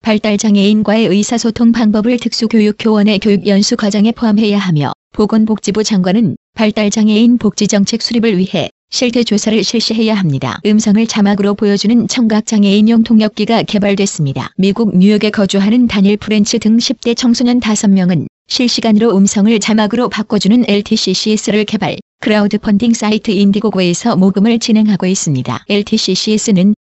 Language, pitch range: Korean, 200-225 Hz